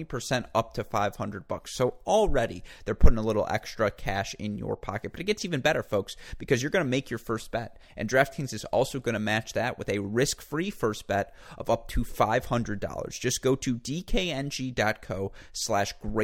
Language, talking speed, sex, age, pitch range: English, 190 wpm, male, 30-49, 100-130 Hz